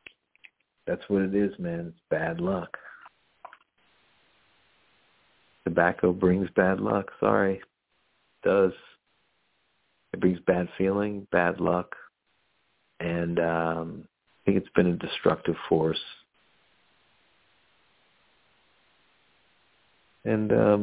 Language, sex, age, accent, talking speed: English, male, 60-79, American, 90 wpm